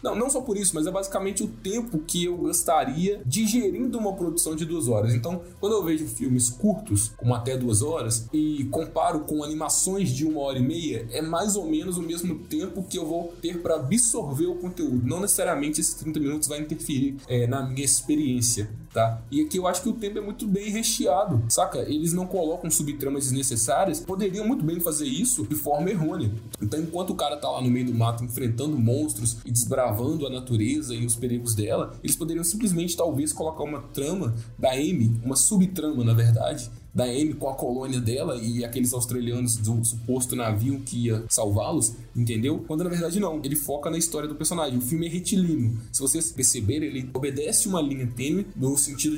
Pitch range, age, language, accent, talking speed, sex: 120-170 Hz, 20-39, Portuguese, Brazilian, 200 wpm, male